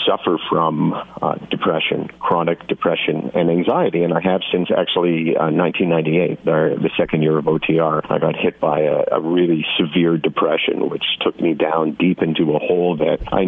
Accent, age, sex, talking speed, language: American, 50-69, male, 175 wpm, English